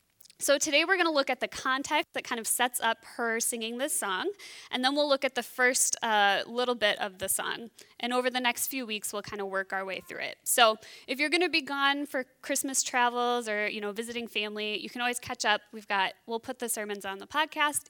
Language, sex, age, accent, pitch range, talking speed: English, female, 20-39, American, 210-280 Hz, 250 wpm